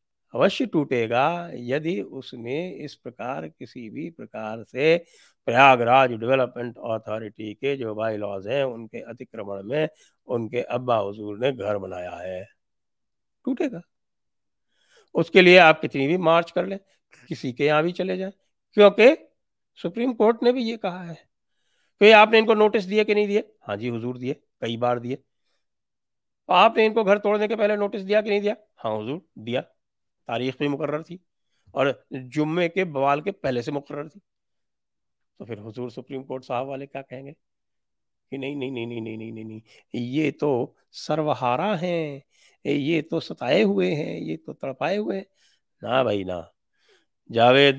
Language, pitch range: English, 110-165 Hz